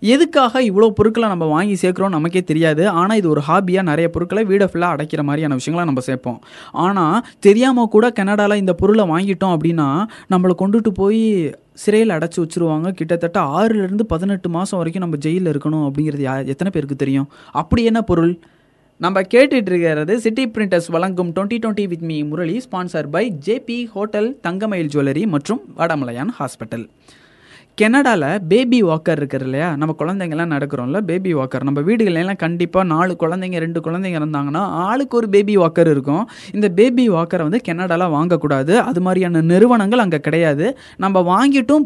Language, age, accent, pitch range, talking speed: Tamil, 20-39, native, 155-210 Hz, 150 wpm